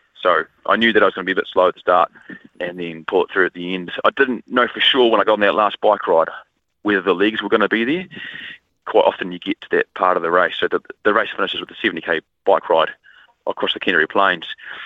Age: 20-39